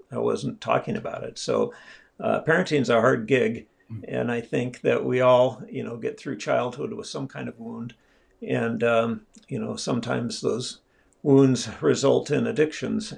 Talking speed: 175 wpm